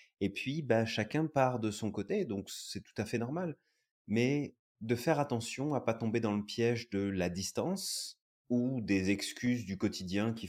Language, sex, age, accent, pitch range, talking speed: French, male, 30-49, French, 95-120 Hz, 195 wpm